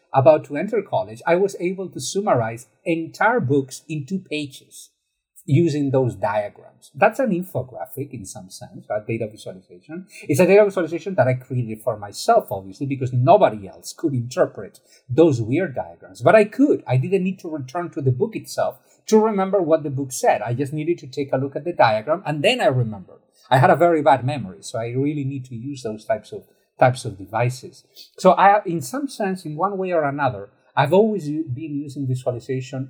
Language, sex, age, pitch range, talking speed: English, male, 50-69, 125-170 Hz, 200 wpm